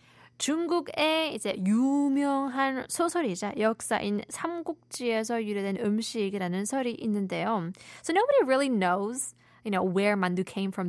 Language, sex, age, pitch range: Korean, female, 20-39, 185-235 Hz